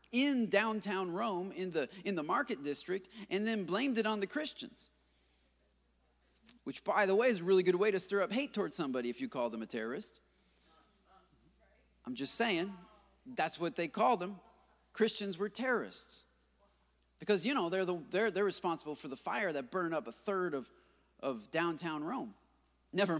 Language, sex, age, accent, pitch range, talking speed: English, male, 30-49, American, 175-245 Hz, 180 wpm